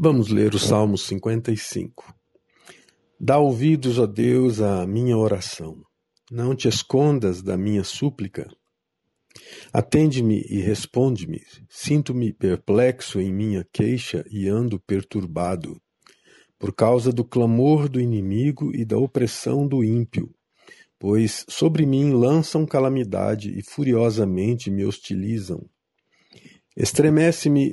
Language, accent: Portuguese, Brazilian